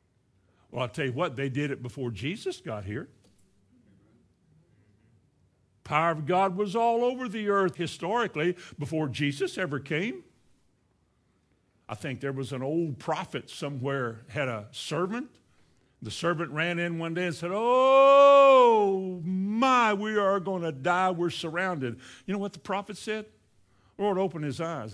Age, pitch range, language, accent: 60-79, 120-180 Hz, English, American